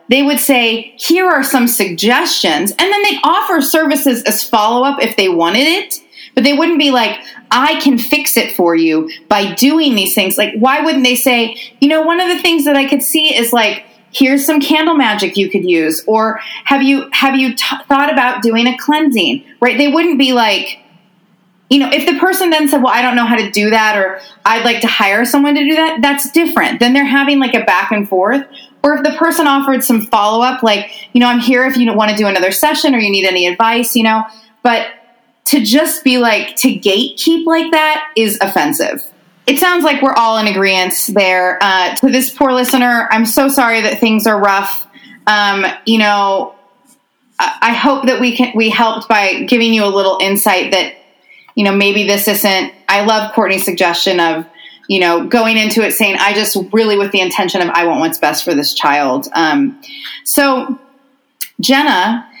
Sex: female